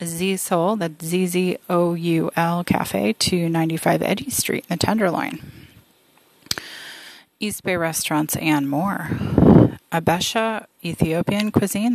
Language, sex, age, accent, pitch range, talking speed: English, female, 30-49, American, 160-200 Hz, 115 wpm